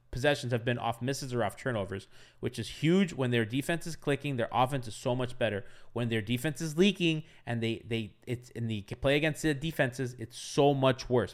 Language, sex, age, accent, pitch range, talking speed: English, male, 20-39, American, 120-165 Hz, 215 wpm